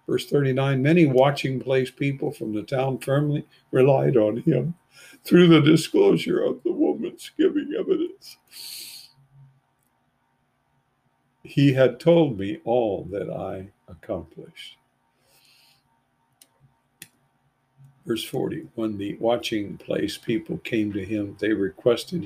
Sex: male